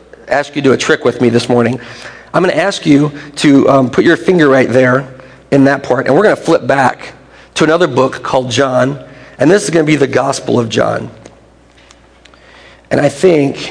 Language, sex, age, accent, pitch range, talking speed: English, male, 40-59, American, 125-145 Hz, 215 wpm